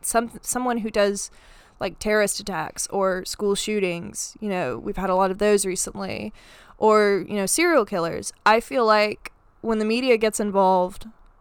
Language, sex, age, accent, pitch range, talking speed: English, female, 20-39, American, 195-225 Hz, 170 wpm